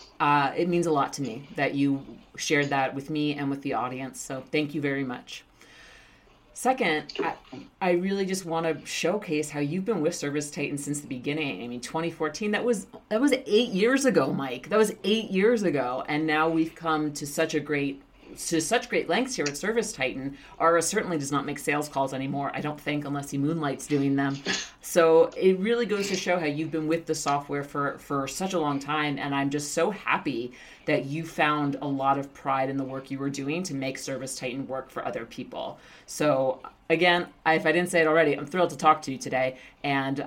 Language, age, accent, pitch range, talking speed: English, 30-49, American, 135-165 Hz, 220 wpm